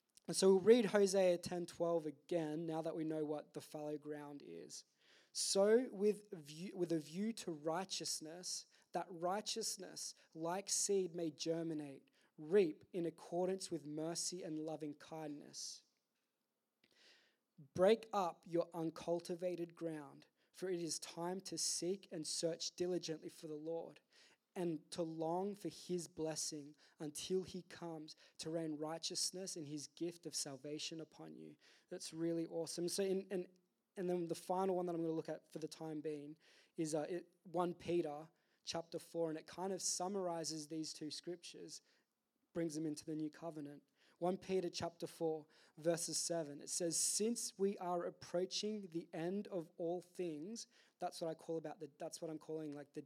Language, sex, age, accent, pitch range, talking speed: English, male, 20-39, Australian, 155-180 Hz, 160 wpm